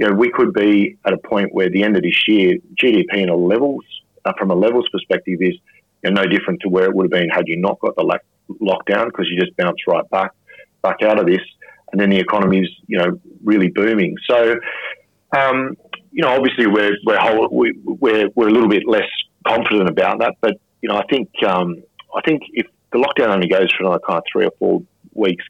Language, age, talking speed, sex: English, 40-59, 235 wpm, male